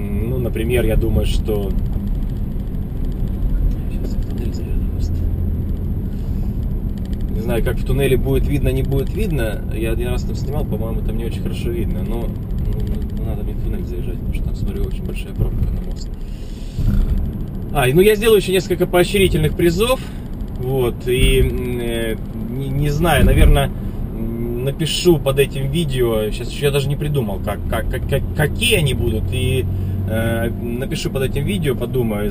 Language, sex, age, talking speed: Russian, male, 20-39, 145 wpm